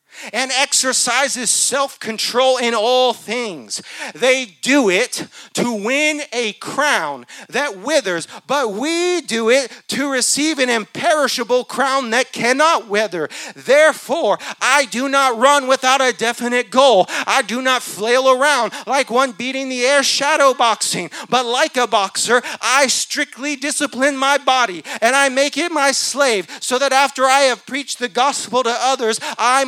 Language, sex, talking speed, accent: English, male, 150 wpm, American